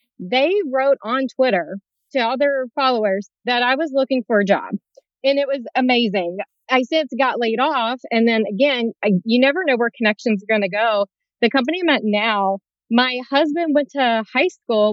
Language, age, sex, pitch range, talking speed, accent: English, 30-49, female, 220-275 Hz, 190 wpm, American